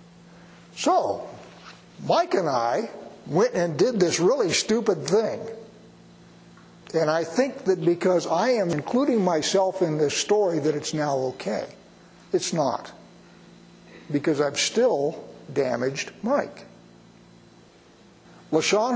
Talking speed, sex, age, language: 110 wpm, male, 60-79, English